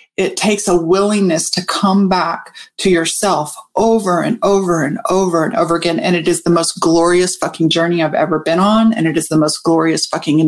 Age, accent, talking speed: 30-49, American, 205 wpm